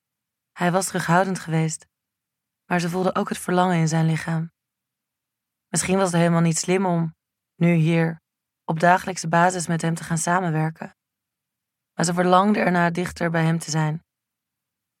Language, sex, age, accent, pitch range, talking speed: Dutch, female, 20-39, Dutch, 165-185 Hz, 155 wpm